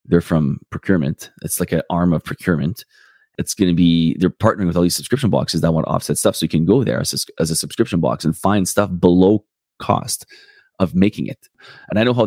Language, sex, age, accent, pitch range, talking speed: English, male, 30-49, Canadian, 80-95 Hz, 230 wpm